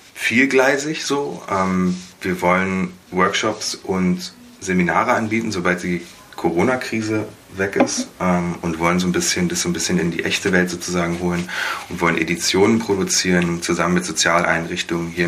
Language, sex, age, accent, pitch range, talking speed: German, male, 30-49, German, 85-105 Hz, 130 wpm